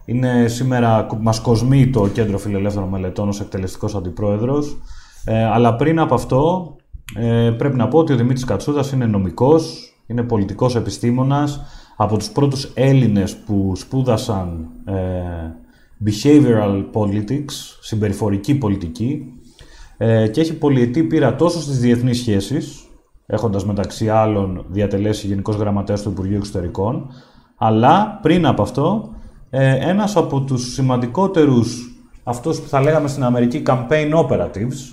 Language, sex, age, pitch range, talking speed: Greek, male, 30-49, 105-145 Hz, 130 wpm